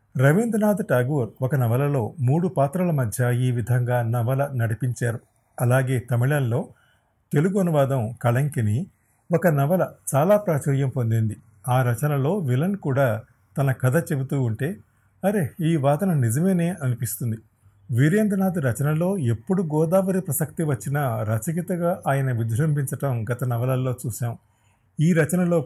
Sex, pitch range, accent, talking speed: male, 120-155 Hz, native, 110 wpm